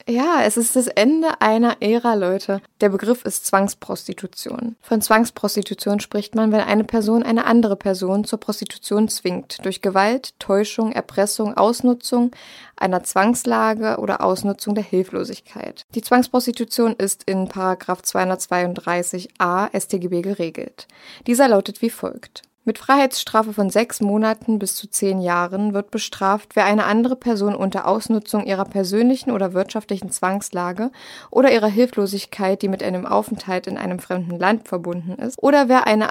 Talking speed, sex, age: 140 wpm, female, 20-39